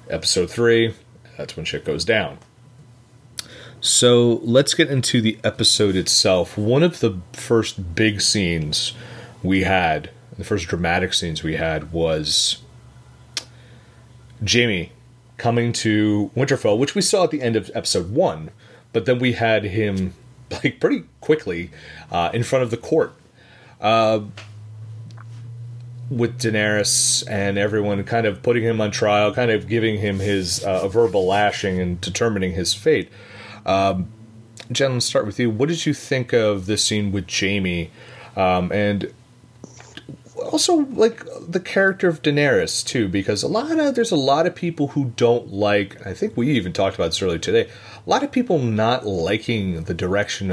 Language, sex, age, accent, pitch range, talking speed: English, male, 30-49, American, 100-125 Hz, 155 wpm